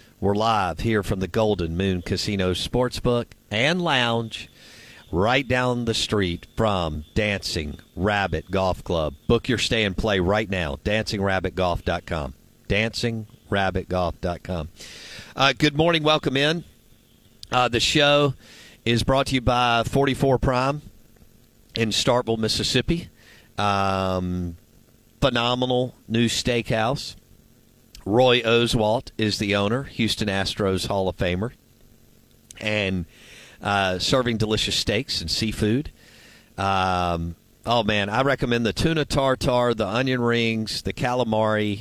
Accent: American